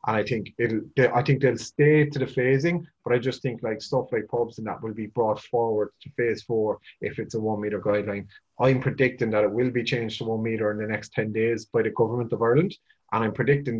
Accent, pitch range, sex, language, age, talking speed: Irish, 105-130 Hz, male, English, 30-49, 250 wpm